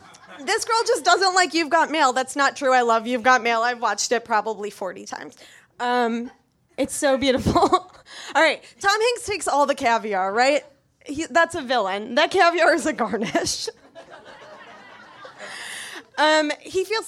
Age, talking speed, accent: 20-39, 165 wpm, American